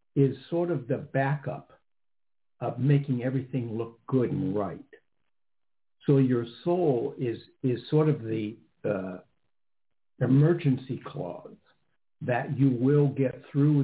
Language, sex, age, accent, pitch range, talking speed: English, male, 60-79, American, 120-145 Hz, 120 wpm